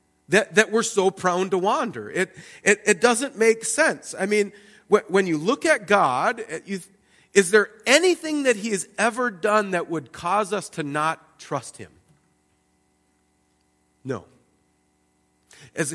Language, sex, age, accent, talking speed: English, male, 40-59, American, 155 wpm